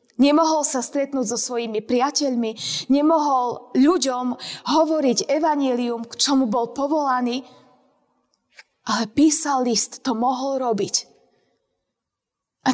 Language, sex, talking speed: Slovak, female, 100 wpm